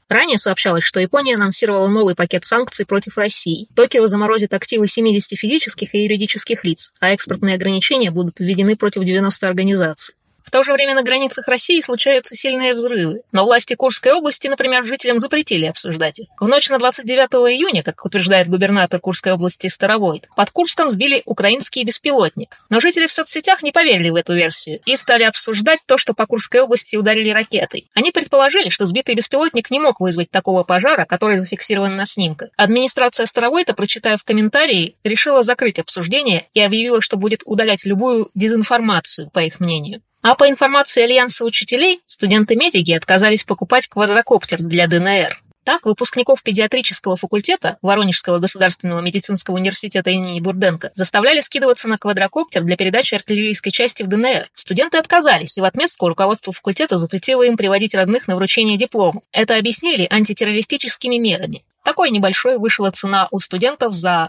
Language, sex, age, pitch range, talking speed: Russian, female, 20-39, 190-245 Hz, 155 wpm